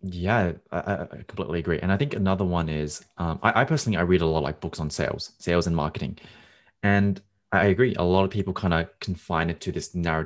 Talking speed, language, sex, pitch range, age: 240 wpm, English, male, 80-105 Hz, 20-39